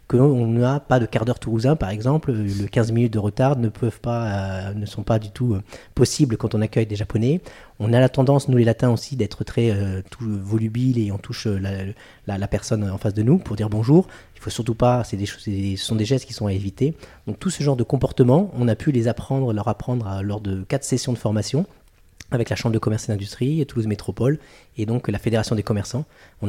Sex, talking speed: male, 245 wpm